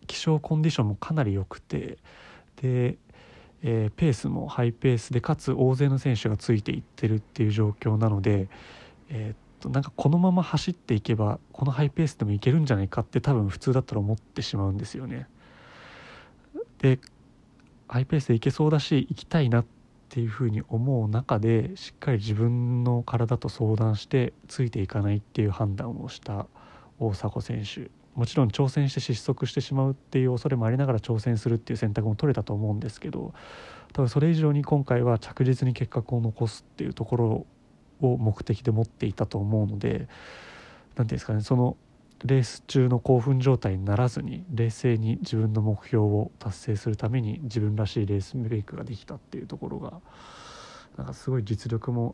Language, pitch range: Japanese, 110-135 Hz